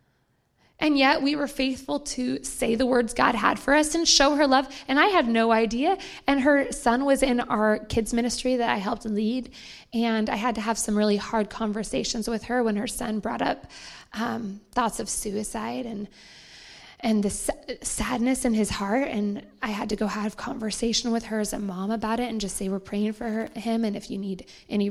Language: English